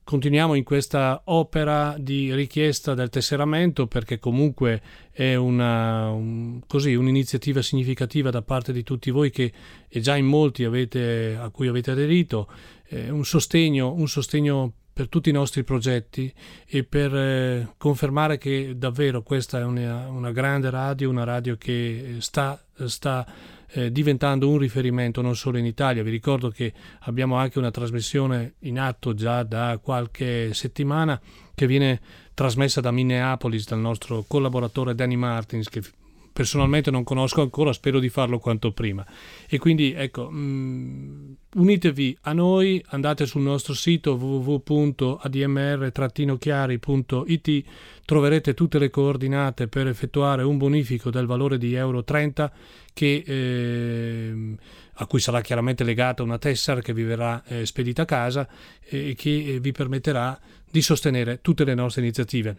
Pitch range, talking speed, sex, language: 120-140 Hz, 145 wpm, male, Italian